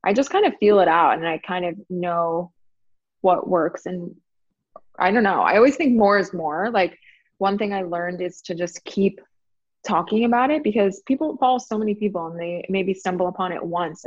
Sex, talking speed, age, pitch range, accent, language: female, 210 wpm, 20-39, 175-210 Hz, American, English